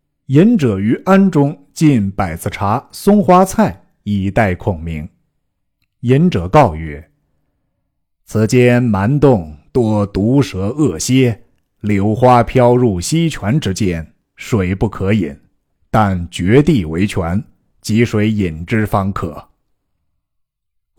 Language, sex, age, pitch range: Chinese, male, 50-69, 95-135 Hz